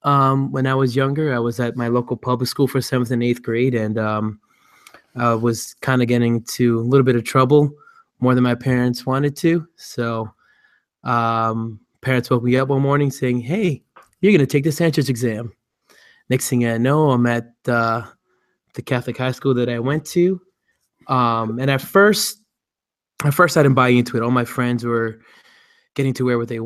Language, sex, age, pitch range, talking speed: English, male, 20-39, 115-135 Hz, 200 wpm